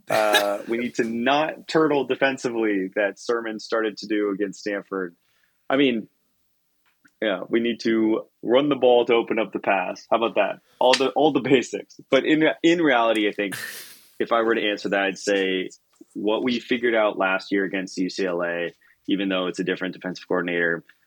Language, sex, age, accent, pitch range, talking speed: English, male, 20-39, American, 90-110 Hz, 185 wpm